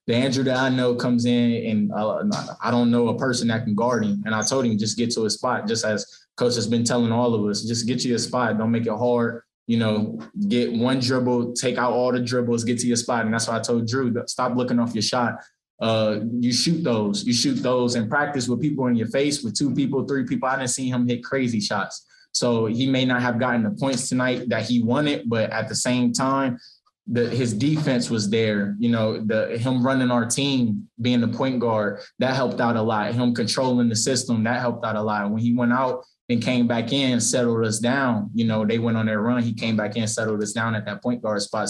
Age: 20-39